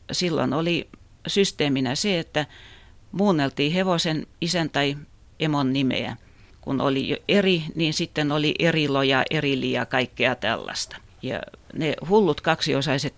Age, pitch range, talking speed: 40-59, 115-140 Hz, 115 wpm